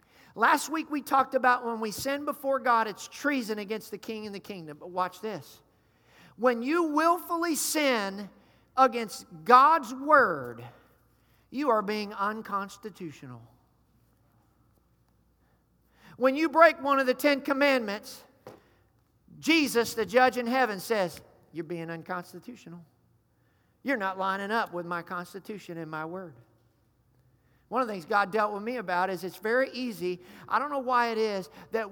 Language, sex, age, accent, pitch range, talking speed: English, male, 50-69, American, 185-250 Hz, 150 wpm